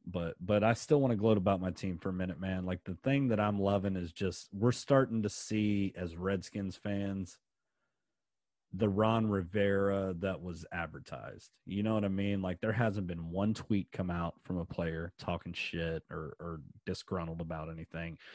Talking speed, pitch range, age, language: 190 wpm, 85-105 Hz, 30-49, English